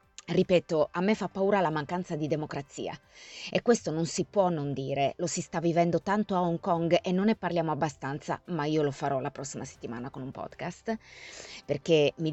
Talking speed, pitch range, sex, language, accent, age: 200 wpm, 140-175 Hz, female, Italian, native, 20-39